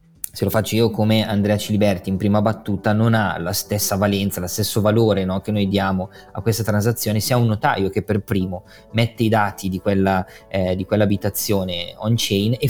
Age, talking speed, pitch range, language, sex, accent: 20-39, 205 wpm, 100-120 Hz, Italian, male, native